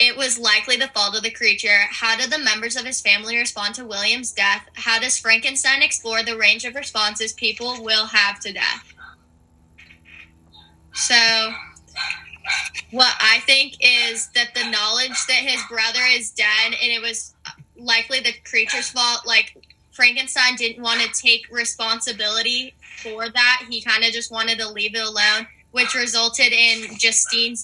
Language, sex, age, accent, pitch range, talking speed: English, female, 10-29, American, 215-240 Hz, 160 wpm